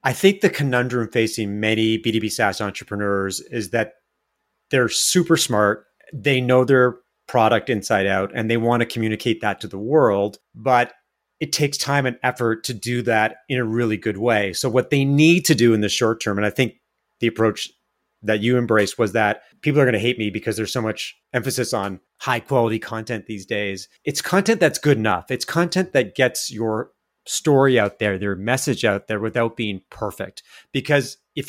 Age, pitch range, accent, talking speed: 30-49, 110-135 Hz, American, 195 wpm